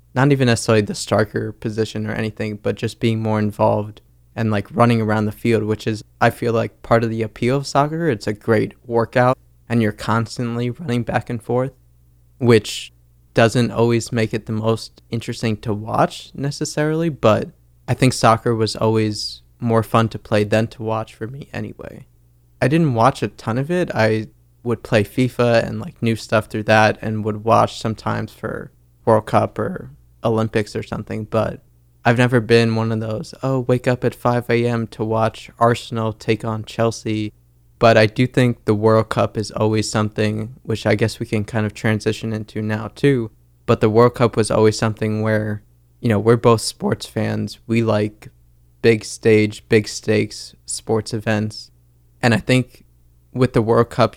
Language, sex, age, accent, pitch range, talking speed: English, male, 20-39, American, 105-120 Hz, 185 wpm